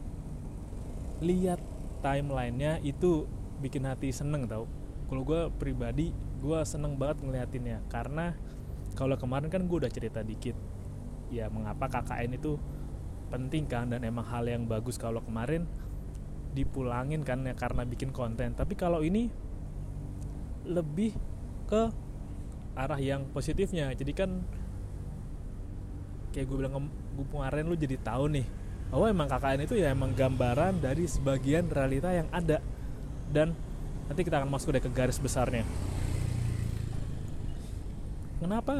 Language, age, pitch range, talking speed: Indonesian, 20-39, 115-145 Hz, 130 wpm